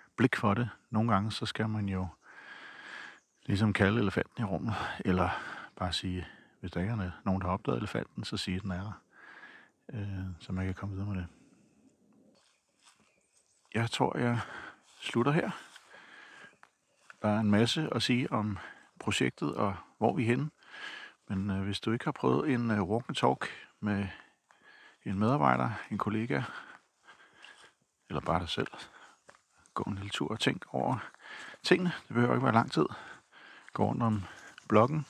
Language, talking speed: Danish, 160 wpm